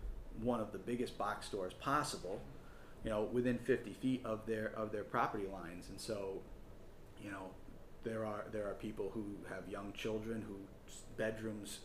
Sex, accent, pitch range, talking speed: male, American, 100-115 Hz, 165 wpm